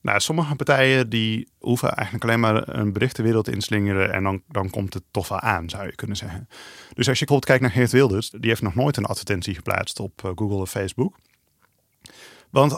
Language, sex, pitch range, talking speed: Dutch, male, 100-130 Hz, 210 wpm